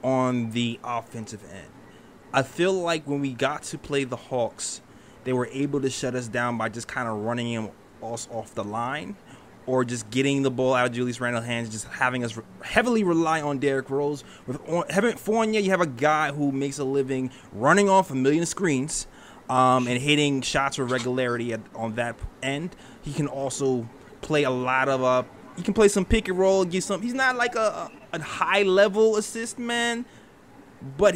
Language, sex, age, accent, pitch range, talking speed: English, male, 20-39, American, 120-165 Hz, 195 wpm